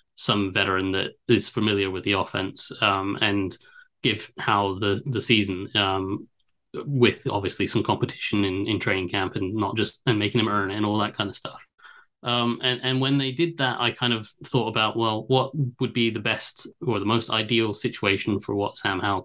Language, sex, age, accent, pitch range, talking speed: English, male, 30-49, British, 100-125 Hz, 205 wpm